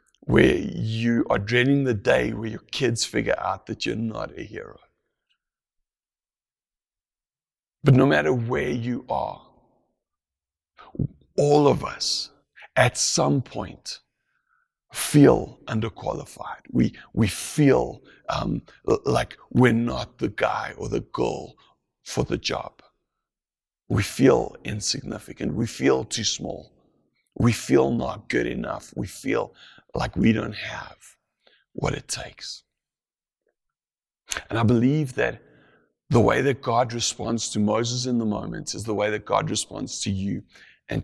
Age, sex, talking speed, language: 60-79, male, 130 wpm, English